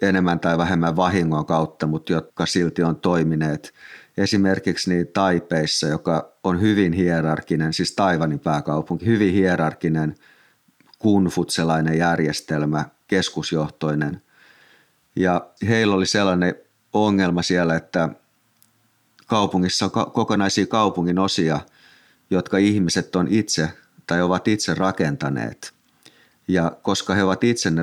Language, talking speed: Finnish, 105 wpm